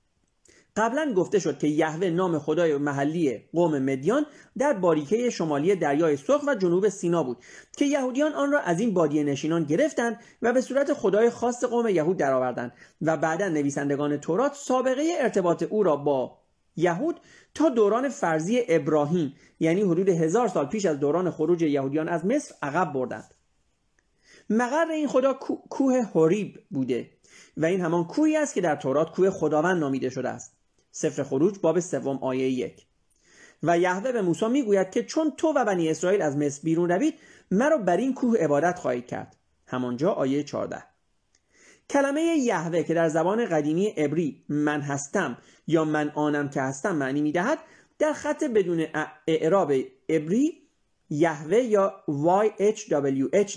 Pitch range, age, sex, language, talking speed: 150-235 Hz, 40-59, male, Persian, 155 wpm